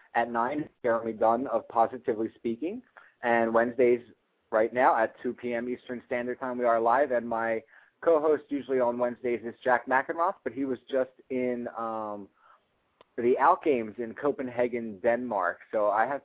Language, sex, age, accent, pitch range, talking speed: English, male, 30-49, American, 110-130 Hz, 165 wpm